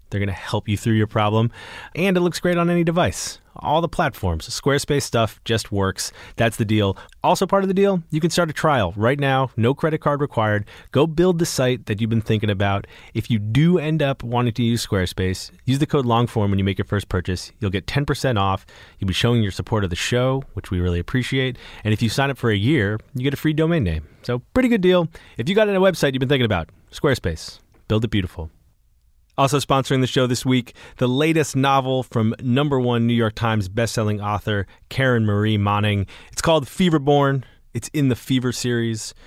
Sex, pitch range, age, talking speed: male, 100-135 Hz, 30-49, 220 wpm